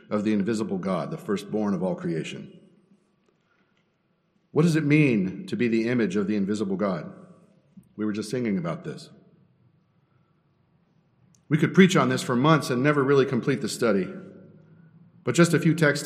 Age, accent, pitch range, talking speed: 50-69, American, 130-170 Hz, 170 wpm